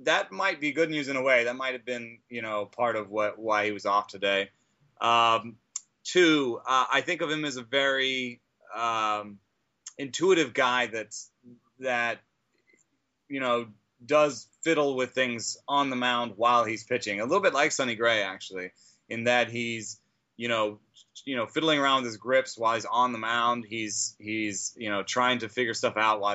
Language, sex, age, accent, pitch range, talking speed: English, male, 30-49, American, 110-130 Hz, 185 wpm